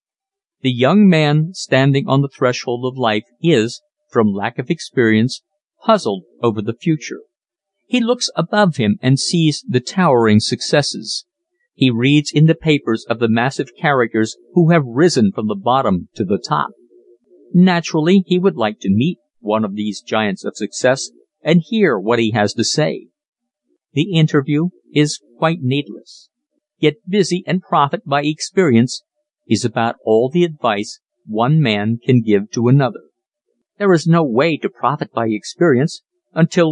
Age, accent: 50-69, American